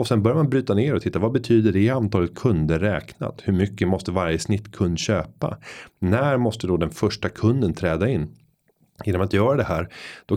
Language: Swedish